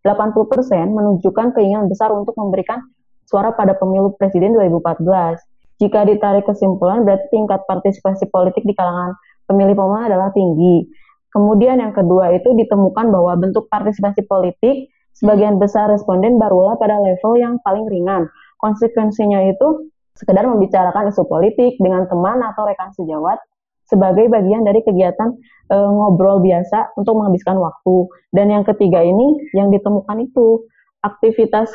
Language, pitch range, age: Indonesian, 195-225 Hz, 20-39